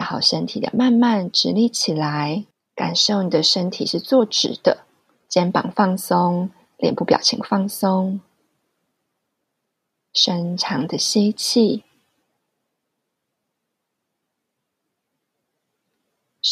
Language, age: Chinese, 30-49